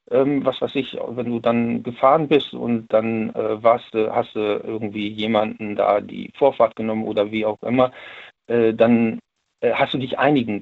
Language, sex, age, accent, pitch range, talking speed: German, male, 50-69, German, 110-130 Hz, 185 wpm